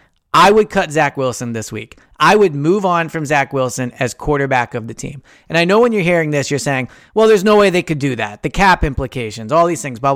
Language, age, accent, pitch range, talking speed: English, 30-49, American, 130-170 Hz, 255 wpm